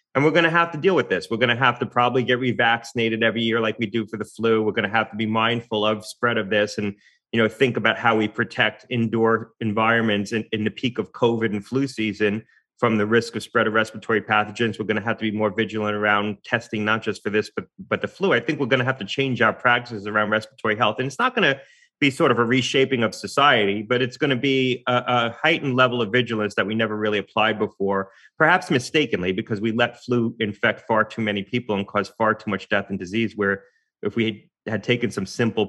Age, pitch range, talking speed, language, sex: 30-49, 110-130 Hz, 250 wpm, English, male